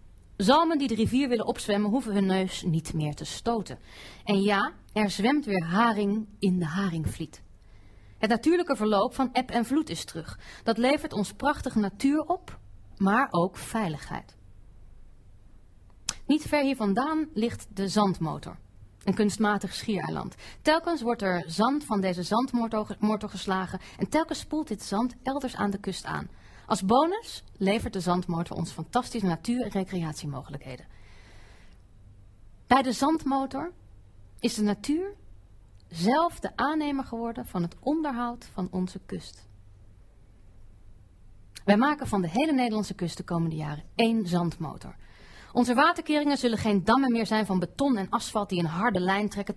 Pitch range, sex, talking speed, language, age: 165-250 Hz, female, 145 wpm, Dutch, 30-49